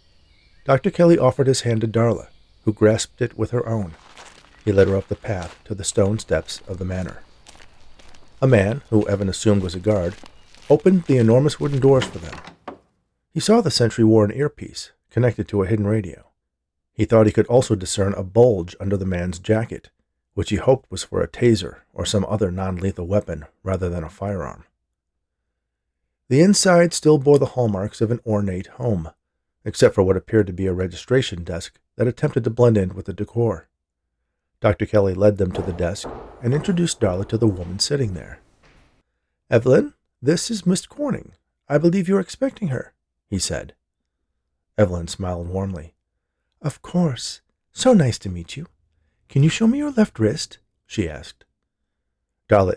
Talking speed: 175 wpm